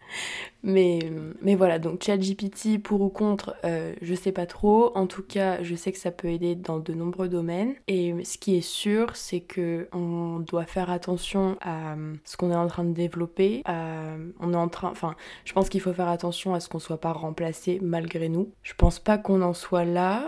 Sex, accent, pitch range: female, French, 170-185 Hz